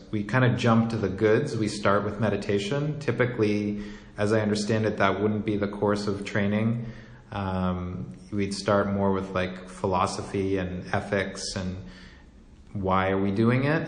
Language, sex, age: English, male, 30-49